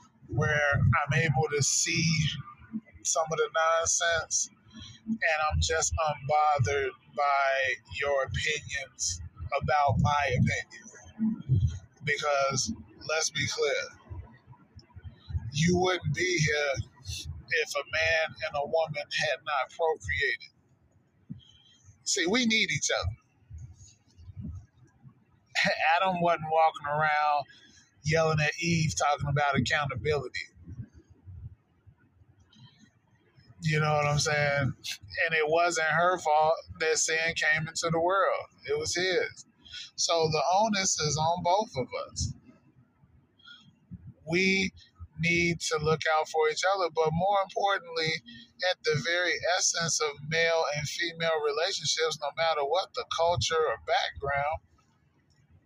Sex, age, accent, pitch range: male, 20-39, American, 125-165 Hz